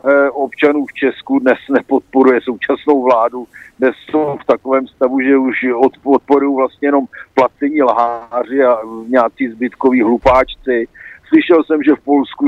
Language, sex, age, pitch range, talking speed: Slovak, male, 50-69, 125-140 Hz, 140 wpm